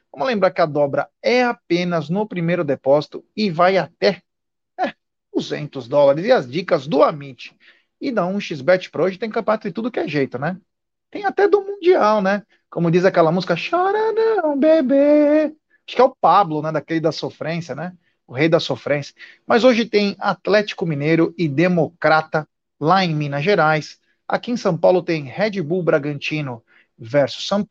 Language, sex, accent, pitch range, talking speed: Portuguese, male, Brazilian, 150-205 Hz, 175 wpm